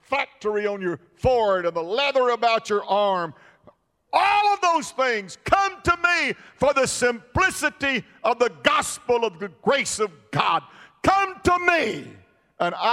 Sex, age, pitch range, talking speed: male, 50-69, 160-200 Hz, 150 wpm